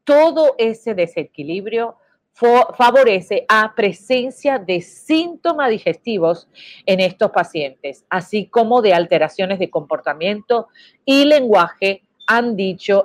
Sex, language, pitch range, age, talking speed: female, Spanish, 185-250 Hz, 40-59, 100 wpm